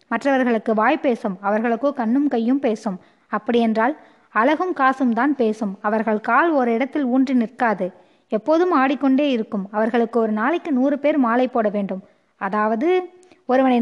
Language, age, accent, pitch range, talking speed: Tamil, 20-39, native, 225-285 Hz, 135 wpm